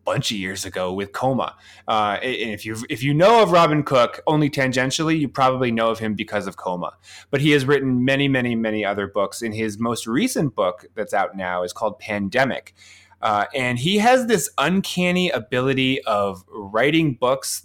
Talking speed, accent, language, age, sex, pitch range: 190 wpm, American, English, 30-49, male, 105-140 Hz